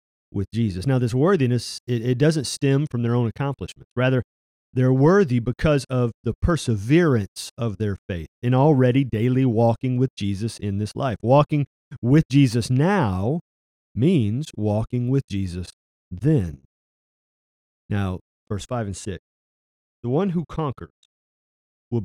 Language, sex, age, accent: English, male, 40-59, American